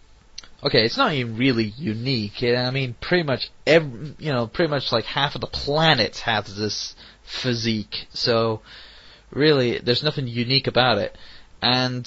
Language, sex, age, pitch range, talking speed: English, male, 20-39, 110-135 Hz, 155 wpm